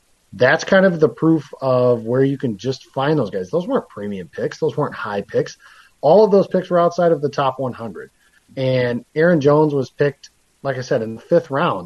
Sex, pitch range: male, 125-155 Hz